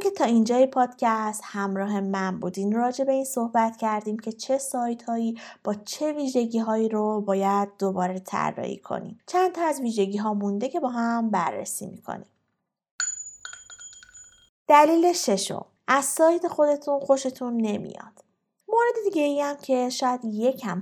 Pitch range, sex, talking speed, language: 210-290 Hz, female, 145 wpm, Persian